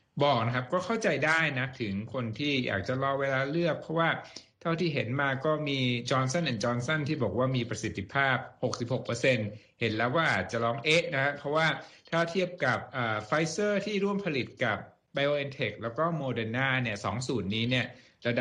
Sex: male